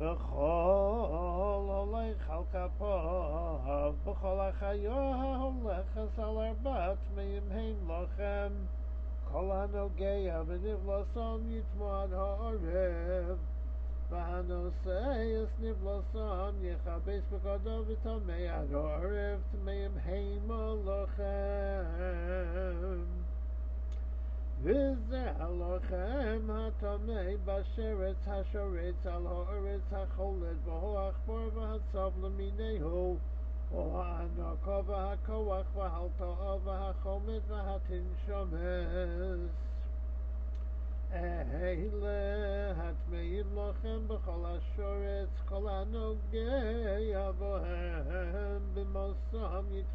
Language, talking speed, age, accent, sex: English, 65 wpm, 50-69, American, male